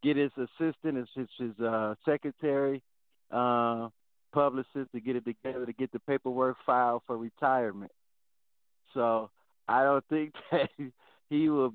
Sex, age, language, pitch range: male, 50-69, English, 115-150 Hz